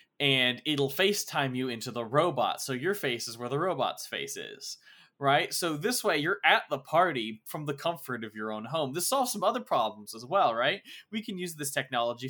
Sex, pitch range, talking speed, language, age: male, 125-170 Hz, 215 wpm, English, 20-39